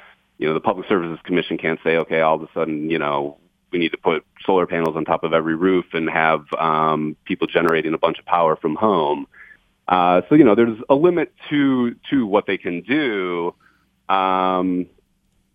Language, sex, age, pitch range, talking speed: English, male, 30-49, 85-115 Hz, 195 wpm